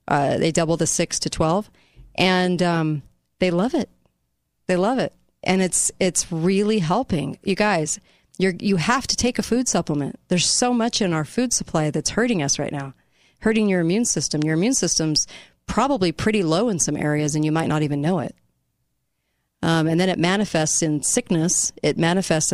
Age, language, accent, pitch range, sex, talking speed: 40-59, English, American, 155-190 Hz, female, 190 wpm